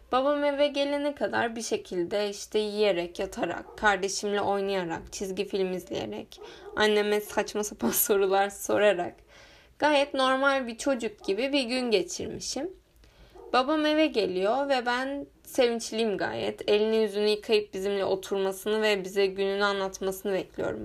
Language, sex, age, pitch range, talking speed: Turkish, female, 10-29, 195-245 Hz, 125 wpm